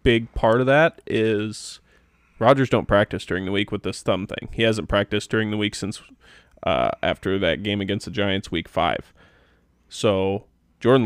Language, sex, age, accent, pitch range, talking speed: English, male, 20-39, American, 95-115 Hz, 180 wpm